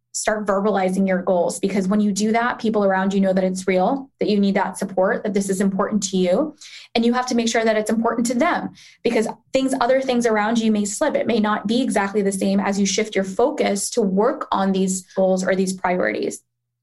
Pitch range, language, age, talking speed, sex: 195-220 Hz, English, 20-39, 235 wpm, female